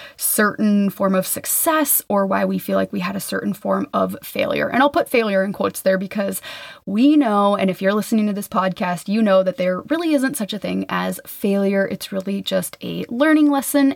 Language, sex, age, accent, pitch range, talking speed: English, female, 20-39, American, 190-225 Hz, 215 wpm